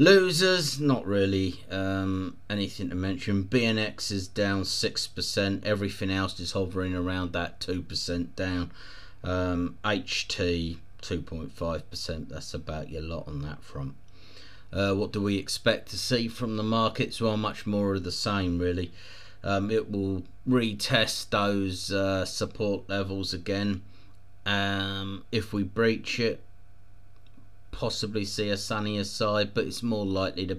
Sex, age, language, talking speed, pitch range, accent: male, 30-49, English, 135 wpm, 95-105 Hz, British